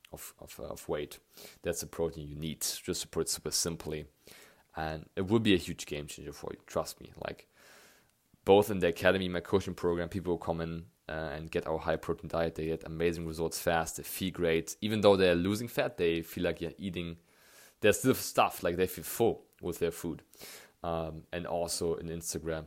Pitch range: 80-95 Hz